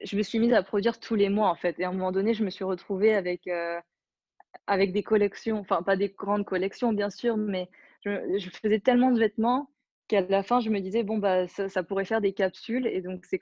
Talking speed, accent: 250 wpm, French